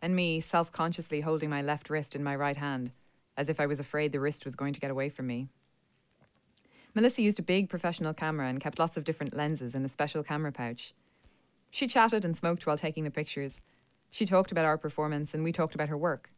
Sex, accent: female, Irish